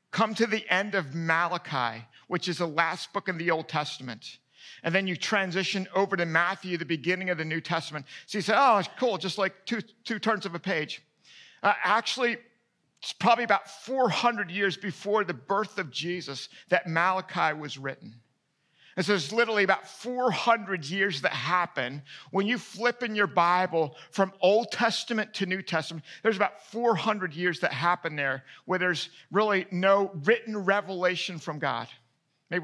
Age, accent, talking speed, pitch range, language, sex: 50-69, American, 170 wpm, 170-215 Hz, English, male